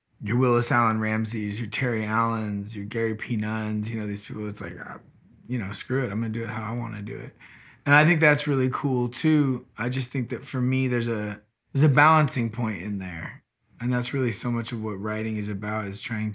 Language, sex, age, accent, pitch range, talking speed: English, male, 20-39, American, 110-125 Hz, 230 wpm